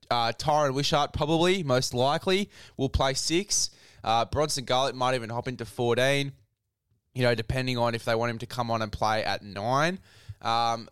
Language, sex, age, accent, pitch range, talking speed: English, male, 20-39, Australian, 110-125 Hz, 180 wpm